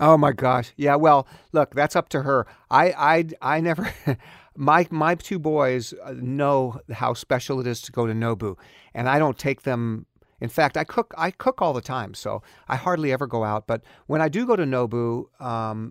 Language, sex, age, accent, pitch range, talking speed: English, male, 50-69, American, 120-155 Hz, 210 wpm